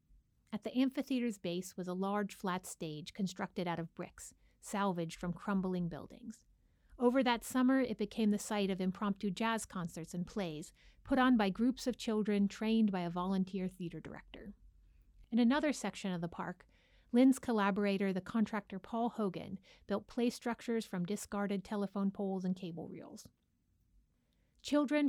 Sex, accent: female, American